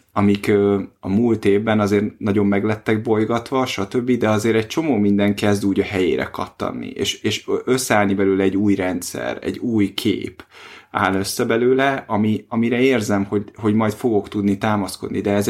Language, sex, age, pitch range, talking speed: Hungarian, male, 30-49, 100-115 Hz, 165 wpm